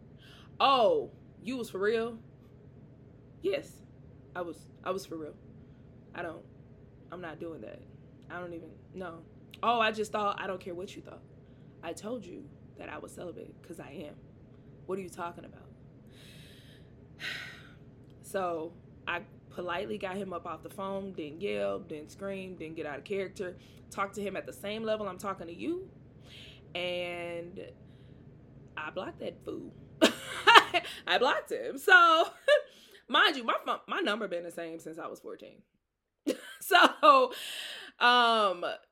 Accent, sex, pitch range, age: American, female, 140-215 Hz, 20-39